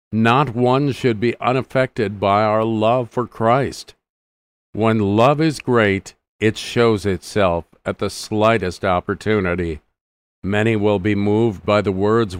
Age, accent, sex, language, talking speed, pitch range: 50-69, American, male, English, 135 wpm, 95-125 Hz